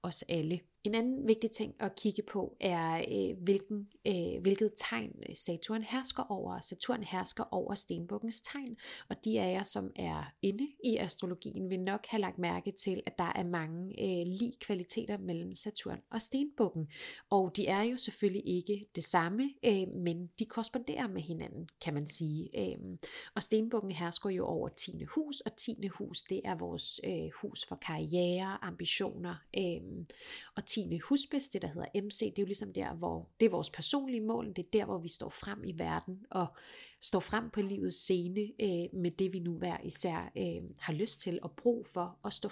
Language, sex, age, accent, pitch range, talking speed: Danish, female, 30-49, native, 175-220 Hz, 175 wpm